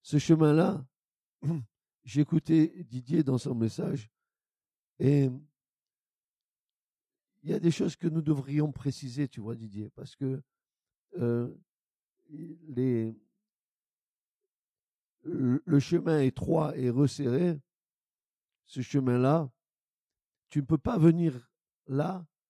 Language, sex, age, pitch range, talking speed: French, male, 50-69, 130-160 Hz, 100 wpm